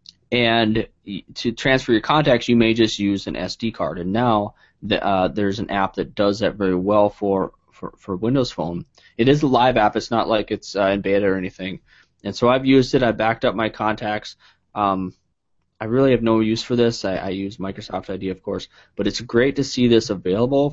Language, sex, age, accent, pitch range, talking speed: English, male, 20-39, American, 95-115 Hz, 215 wpm